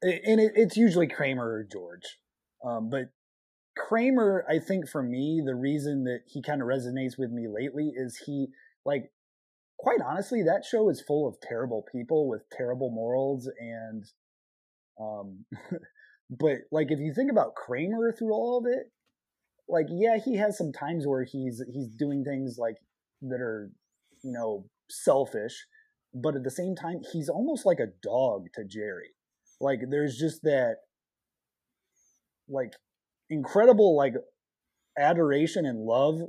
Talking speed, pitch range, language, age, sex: 150 wpm, 125-170 Hz, English, 20-39, male